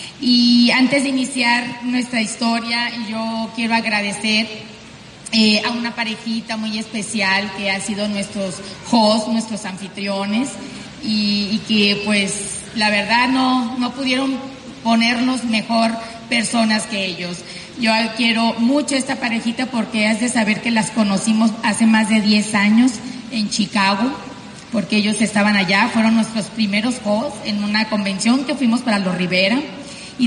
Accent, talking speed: Mexican, 145 wpm